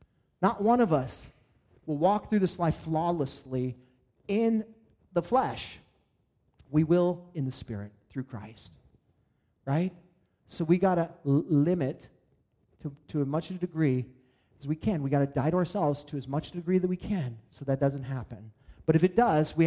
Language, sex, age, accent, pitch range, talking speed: English, male, 30-49, American, 140-205 Hz, 180 wpm